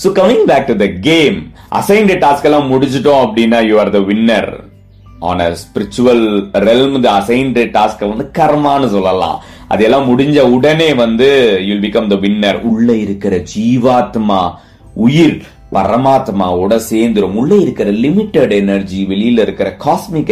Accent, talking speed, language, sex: native, 100 wpm, Tamil, male